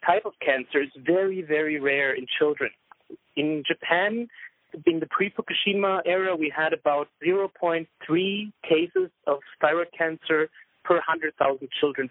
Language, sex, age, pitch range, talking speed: English, male, 30-49, 150-200 Hz, 130 wpm